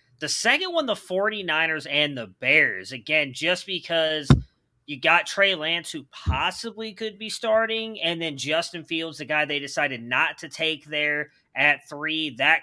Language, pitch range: English, 135-175 Hz